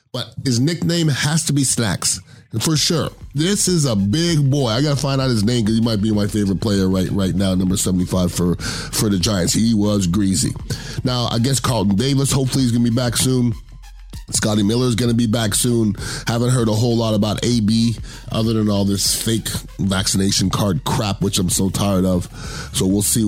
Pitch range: 105-130 Hz